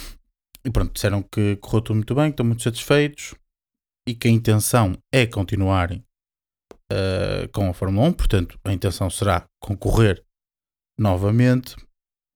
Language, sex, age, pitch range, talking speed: Portuguese, male, 20-39, 95-110 Hz, 135 wpm